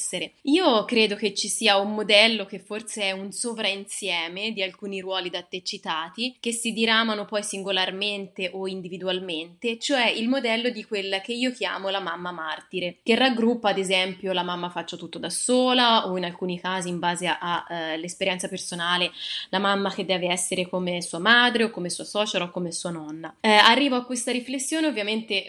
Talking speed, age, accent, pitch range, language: 180 wpm, 20-39, native, 185-235 Hz, Italian